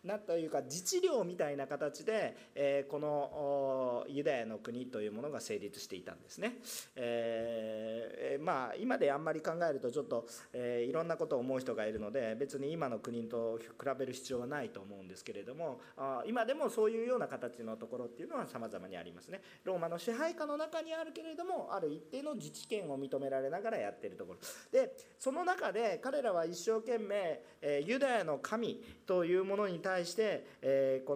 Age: 40-59